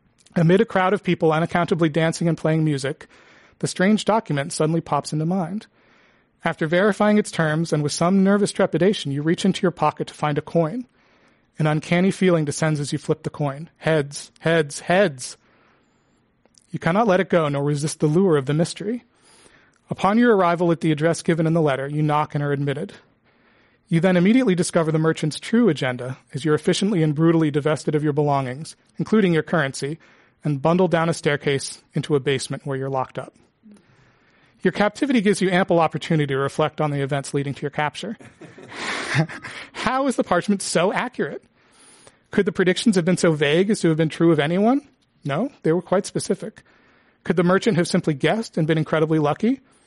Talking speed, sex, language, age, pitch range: 190 wpm, male, English, 40-59, 150-190 Hz